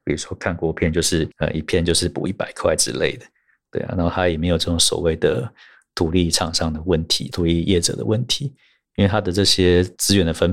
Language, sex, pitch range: Chinese, male, 85-100 Hz